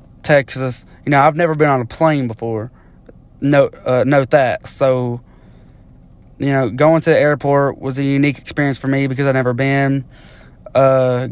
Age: 20-39